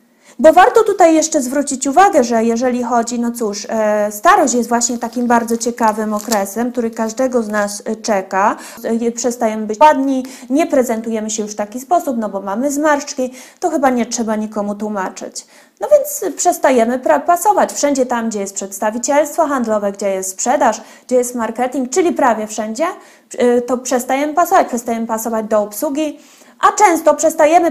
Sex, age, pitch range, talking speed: female, 20-39, 230-305 Hz, 155 wpm